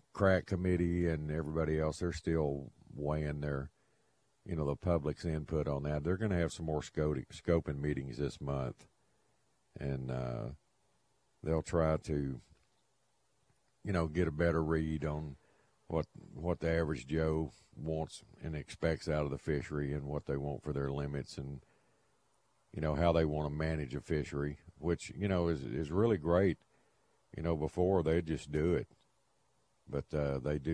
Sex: male